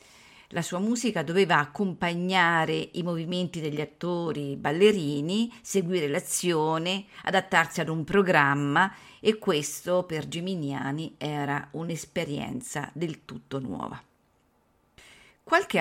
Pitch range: 155-210 Hz